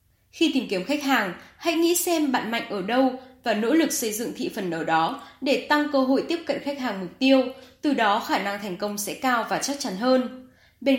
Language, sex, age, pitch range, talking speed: Vietnamese, female, 10-29, 205-280 Hz, 240 wpm